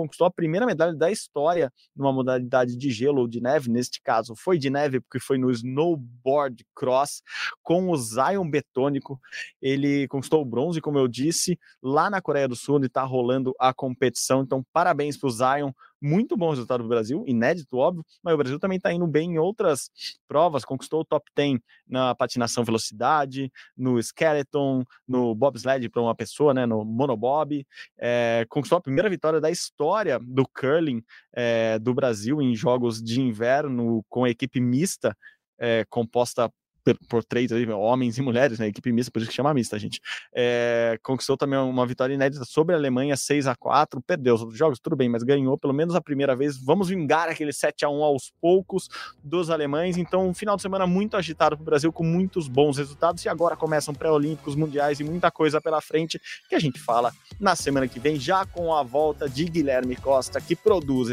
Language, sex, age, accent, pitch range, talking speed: Portuguese, male, 20-39, Brazilian, 125-155 Hz, 190 wpm